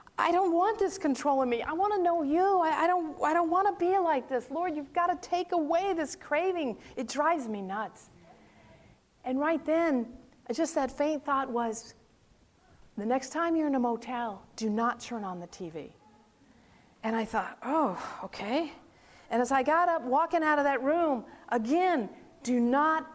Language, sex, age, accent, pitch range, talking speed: English, female, 50-69, American, 235-320 Hz, 185 wpm